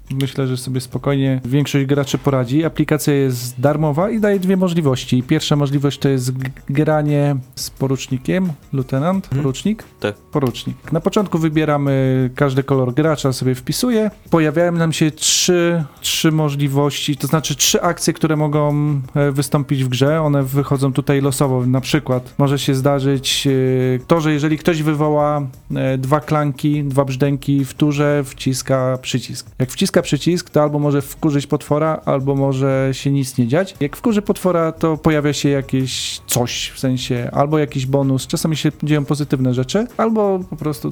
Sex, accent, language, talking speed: male, native, Polish, 155 wpm